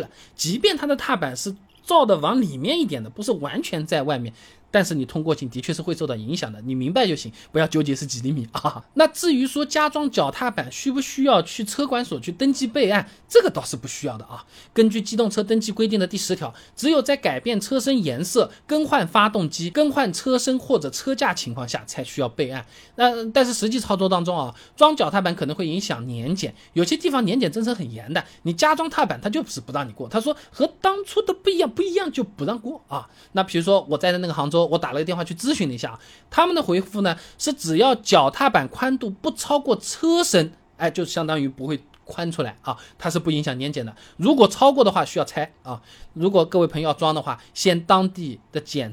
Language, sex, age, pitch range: Chinese, male, 20-39, 150-255 Hz